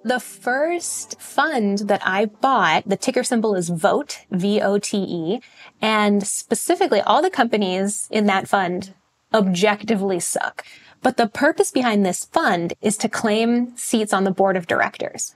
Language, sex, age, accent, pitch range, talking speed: English, female, 10-29, American, 190-235 Hz, 145 wpm